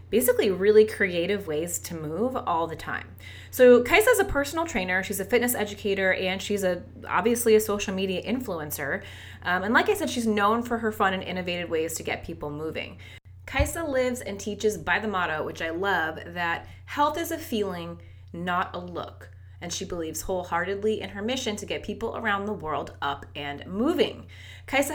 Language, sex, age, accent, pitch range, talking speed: English, female, 20-39, American, 160-225 Hz, 190 wpm